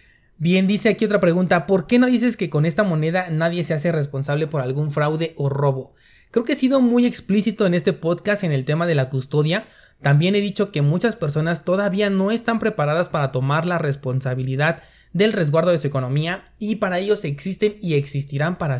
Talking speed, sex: 200 wpm, male